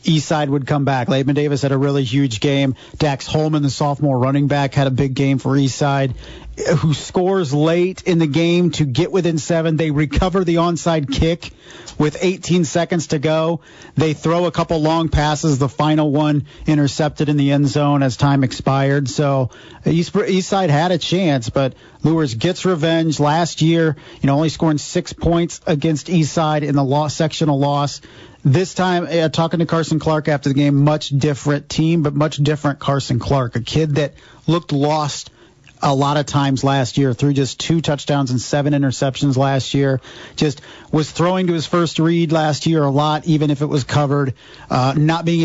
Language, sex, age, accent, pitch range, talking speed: English, male, 40-59, American, 140-165 Hz, 185 wpm